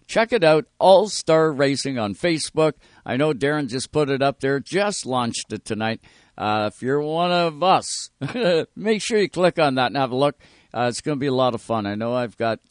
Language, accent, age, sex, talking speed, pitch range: English, American, 60-79, male, 225 wpm, 120-155 Hz